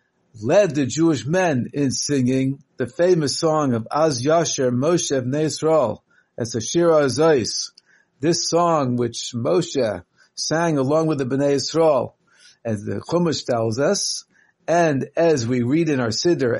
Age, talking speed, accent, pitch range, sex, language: 50-69, 145 wpm, American, 135-185 Hz, male, English